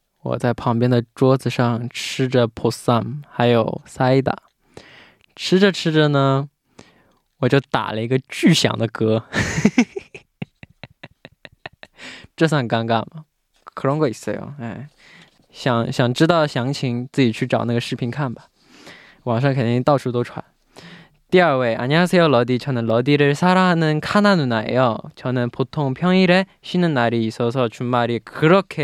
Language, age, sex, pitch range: Korean, 20-39, male, 120-150 Hz